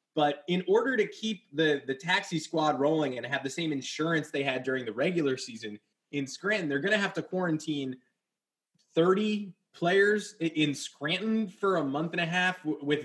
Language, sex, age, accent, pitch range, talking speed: English, male, 20-39, American, 130-170 Hz, 185 wpm